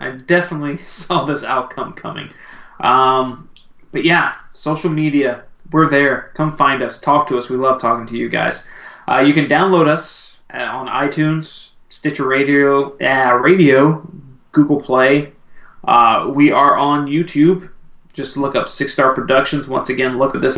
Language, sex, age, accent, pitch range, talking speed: English, male, 20-39, American, 135-165 Hz, 155 wpm